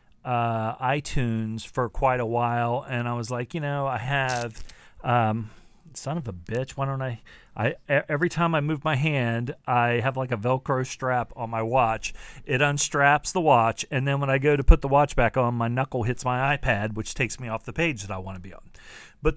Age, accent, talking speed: 40-59, American, 220 wpm